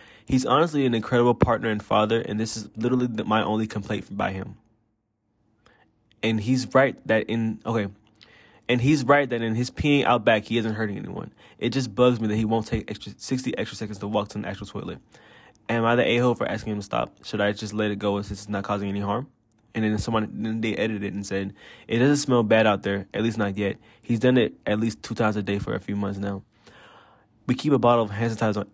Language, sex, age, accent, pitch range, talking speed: English, male, 20-39, American, 105-120 Hz, 240 wpm